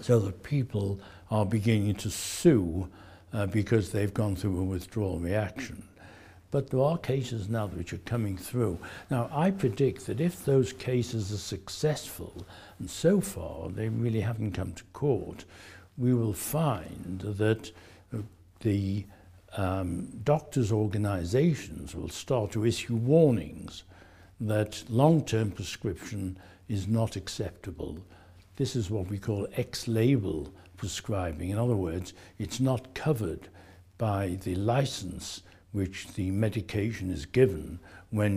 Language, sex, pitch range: English, male, 90-115 Hz